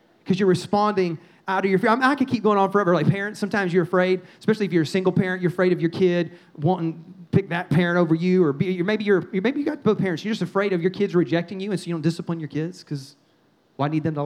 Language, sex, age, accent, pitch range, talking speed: English, male, 30-49, American, 155-190 Hz, 280 wpm